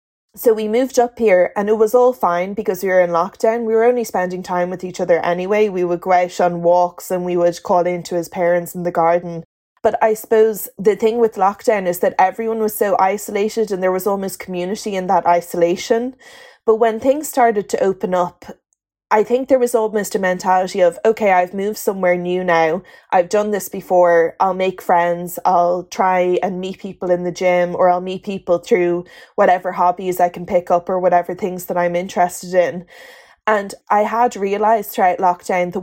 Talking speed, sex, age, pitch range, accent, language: 205 wpm, female, 20-39, 180-215 Hz, Irish, English